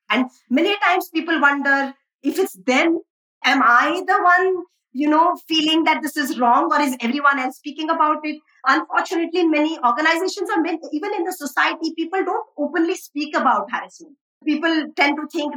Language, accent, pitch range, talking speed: English, Indian, 235-320 Hz, 175 wpm